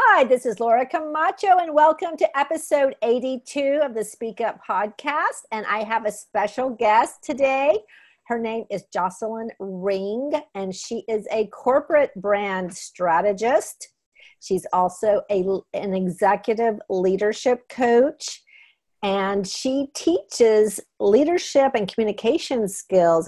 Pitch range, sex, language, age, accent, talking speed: 185-255 Hz, female, English, 50-69, American, 120 wpm